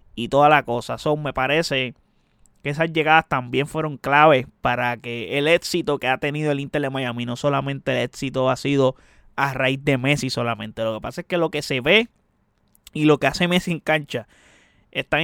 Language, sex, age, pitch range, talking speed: Spanish, male, 20-39, 130-160 Hz, 205 wpm